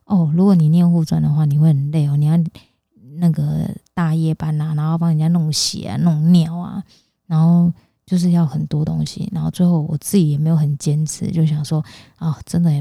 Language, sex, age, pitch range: Chinese, female, 20-39, 155-170 Hz